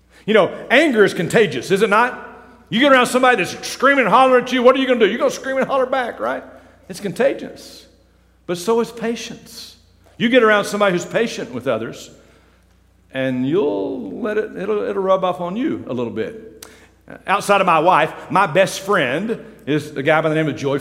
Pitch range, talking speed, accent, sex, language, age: 150-205 Hz, 215 wpm, American, male, English, 50-69